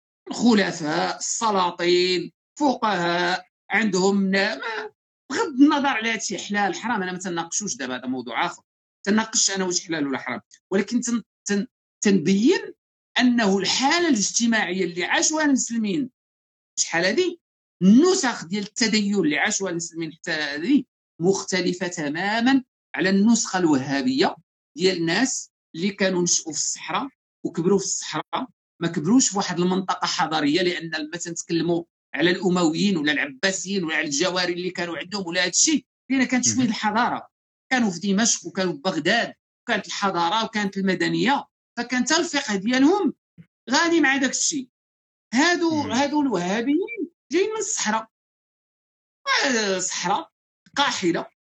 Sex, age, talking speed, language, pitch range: male, 50-69, 120 wpm, Arabic, 180-255 Hz